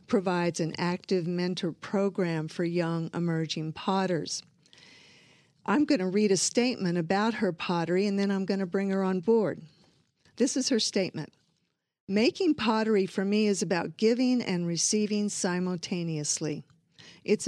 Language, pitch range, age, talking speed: English, 170-210 Hz, 50-69, 145 wpm